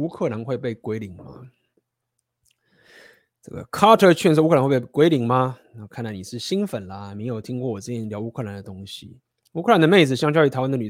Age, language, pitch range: 20-39, Chinese, 115-140 Hz